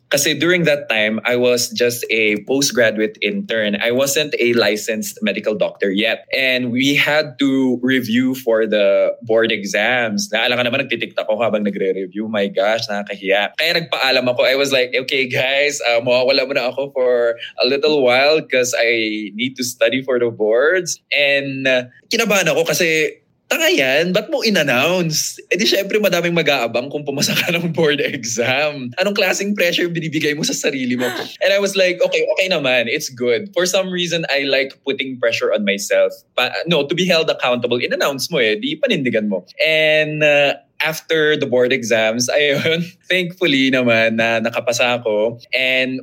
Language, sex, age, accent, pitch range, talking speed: English, male, 20-39, Filipino, 115-155 Hz, 175 wpm